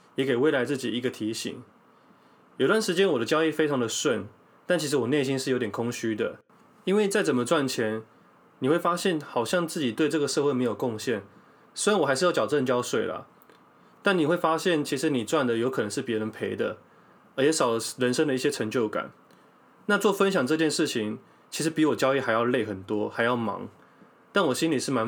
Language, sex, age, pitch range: Chinese, male, 20-39, 120-170 Hz